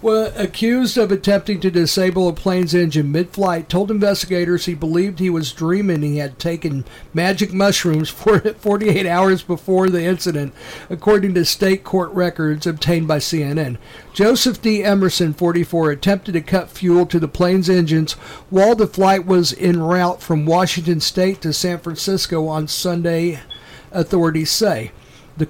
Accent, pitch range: American, 160-190 Hz